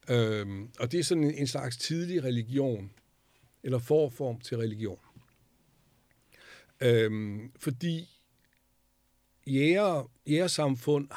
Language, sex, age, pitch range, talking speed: Danish, male, 60-79, 115-140 Hz, 95 wpm